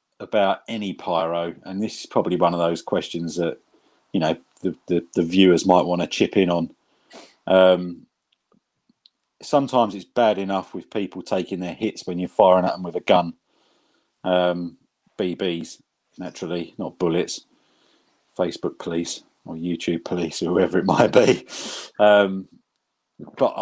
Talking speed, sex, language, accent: 150 wpm, male, English, British